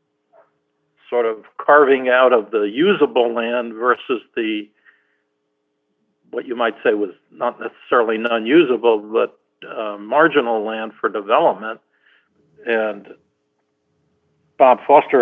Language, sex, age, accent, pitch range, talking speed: English, male, 60-79, American, 100-135 Hz, 105 wpm